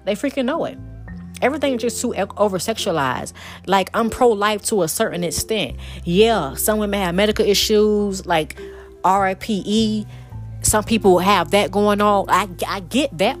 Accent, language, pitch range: American, English, 175-220 Hz